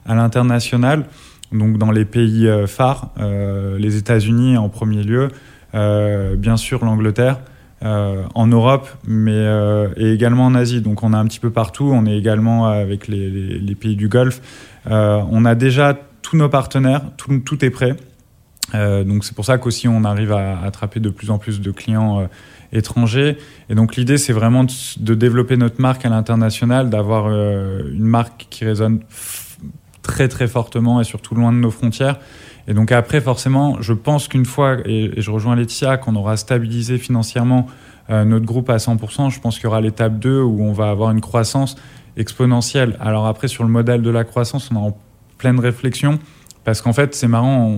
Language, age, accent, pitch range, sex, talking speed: French, 20-39, French, 110-125 Hz, male, 190 wpm